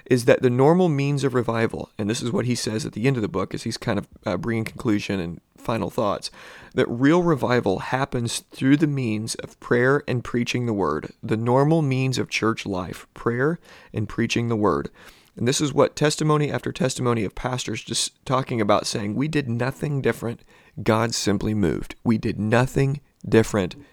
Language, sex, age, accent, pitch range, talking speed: English, male, 40-59, American, 110-130 Hz, 195 wpm